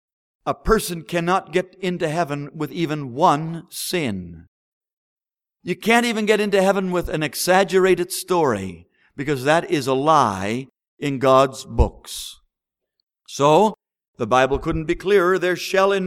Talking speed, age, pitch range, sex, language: 140 wpm, 50-69, 140-180 Hz, male, English